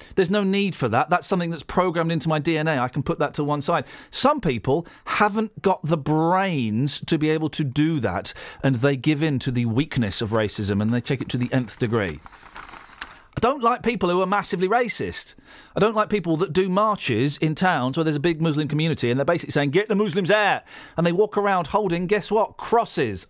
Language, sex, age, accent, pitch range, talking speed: English, male, 40-59, British, 135-200 Hz, 225 wpm